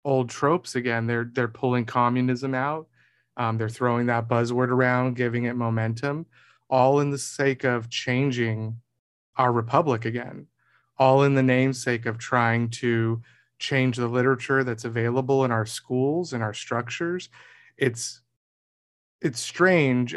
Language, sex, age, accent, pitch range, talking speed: English, male, 30-49, American, 120-135 Hz, 140 wpm